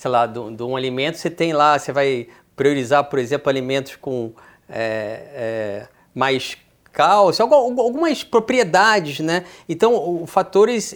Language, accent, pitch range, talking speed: Portuguese, Brazilian, 150-210 Hz, 135 wpm